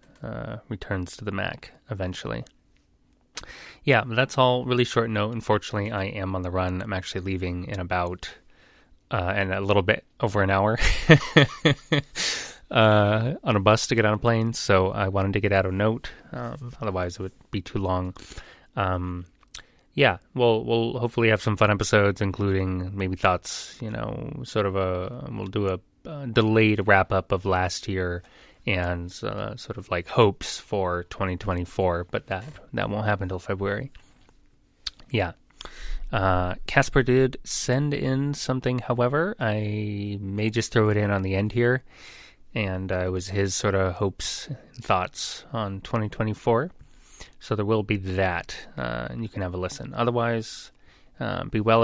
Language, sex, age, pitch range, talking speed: English, male, 20-39, 95-120 Hz, 165 wpm